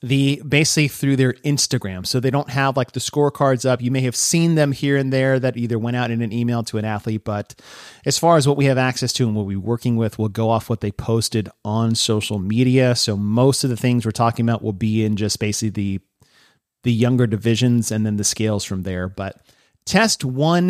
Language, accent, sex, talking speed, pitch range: English, American, male, 230 wpm, 110-140 Hz